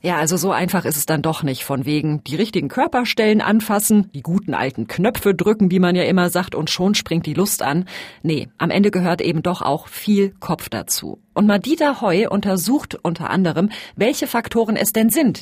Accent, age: German, 40-59